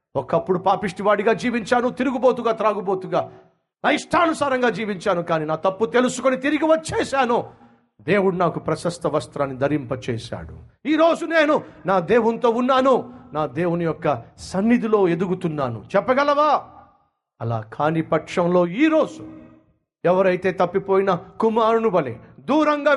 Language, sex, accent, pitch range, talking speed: Telugu, male, native, 150-250 Hz, 100 wpm